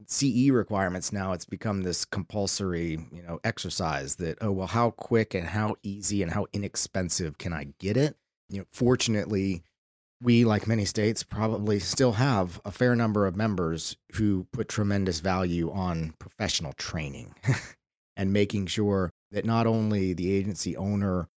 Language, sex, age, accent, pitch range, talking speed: English, male, 30-49, American, 90-110 Hz, 155 wpm